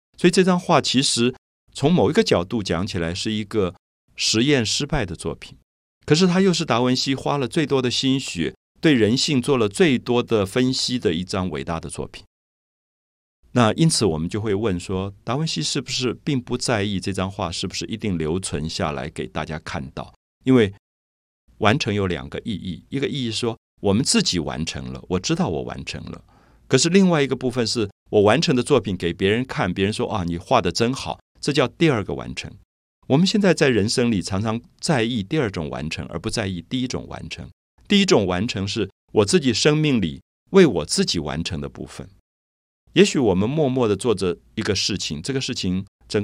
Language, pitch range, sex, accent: Chinese, 85-135 Hz, male, native